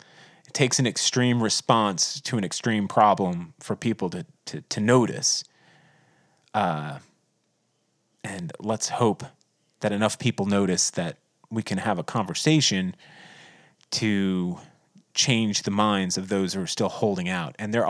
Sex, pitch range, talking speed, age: male, 100-145 Hz, 135 wpm, 30-49